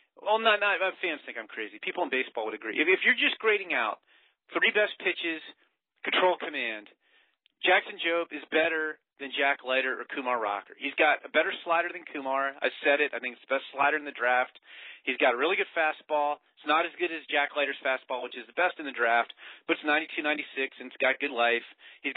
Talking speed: 225 wpm